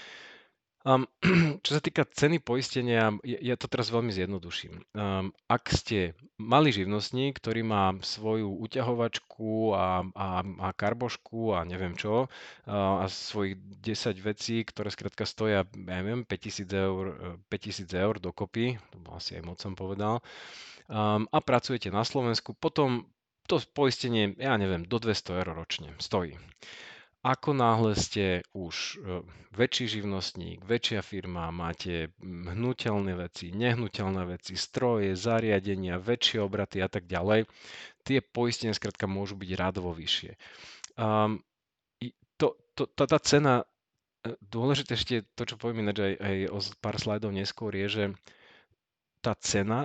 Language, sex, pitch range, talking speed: Slovak, male, 95-120 Hz, 135 wpm